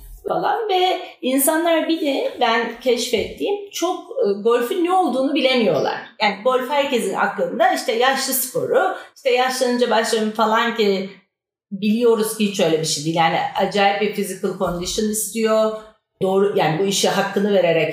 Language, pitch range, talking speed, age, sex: Turkish, 205-265 Hz, 145 wpm, 40-59, female